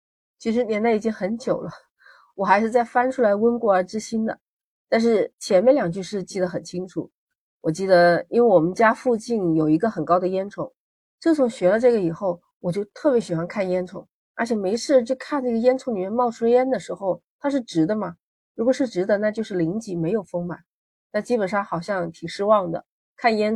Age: 30-49